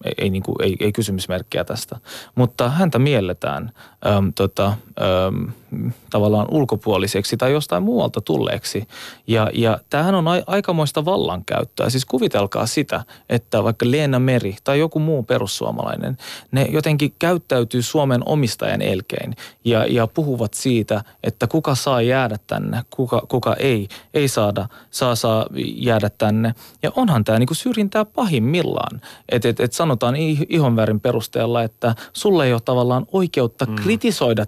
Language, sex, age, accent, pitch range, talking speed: Finnish, male, 20-39, native, 110-145 Hz, 135 wpm